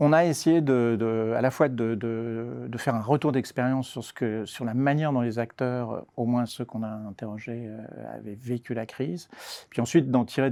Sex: male